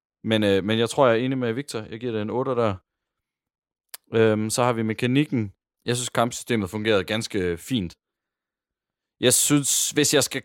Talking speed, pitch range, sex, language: 180 wpm, 100-120 Hz, male, Danish